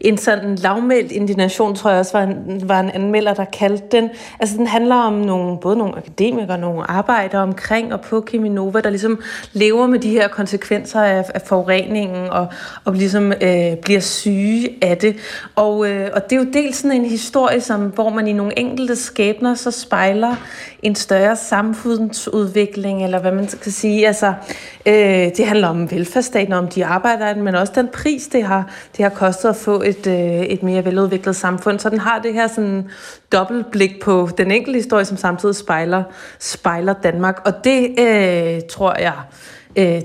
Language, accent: Danish, native